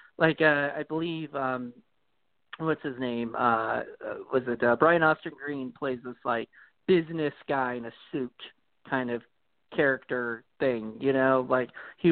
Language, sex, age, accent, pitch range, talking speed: English, male, 40-59, American, 130-160 Hz, 155 wpm